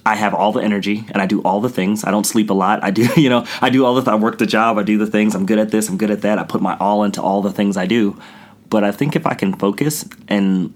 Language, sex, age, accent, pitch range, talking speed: English, male, 30-49, American, 95-110 Hz, 330 wpm